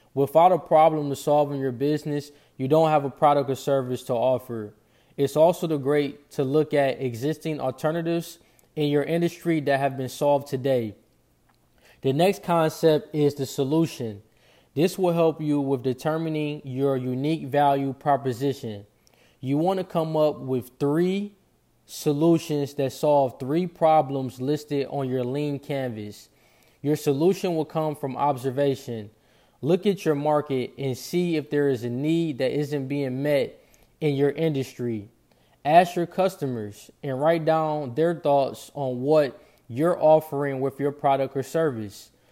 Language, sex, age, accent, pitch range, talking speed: English, male, 20-39, American, 130-155 Hz, 150 wpm